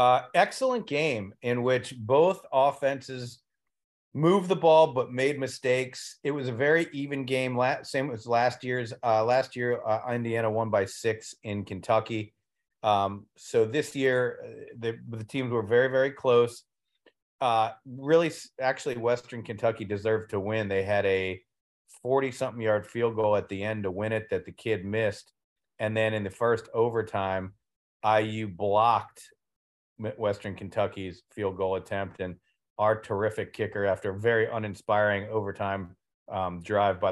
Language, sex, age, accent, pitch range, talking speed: English, male, 40-59, American, 105-130 Hz, 150 wpm